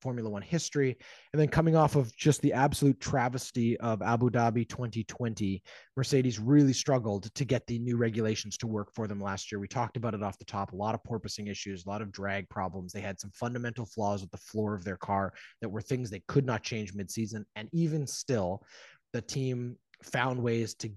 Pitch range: 105-130 Hz